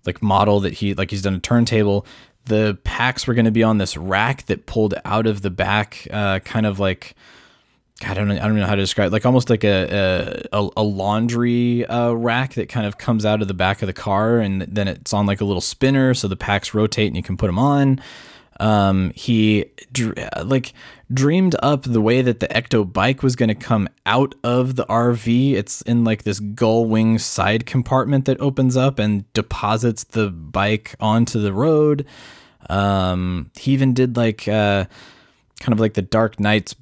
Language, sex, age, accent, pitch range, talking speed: English, male, 20-39, American, 100-125 Hz, 205 wpm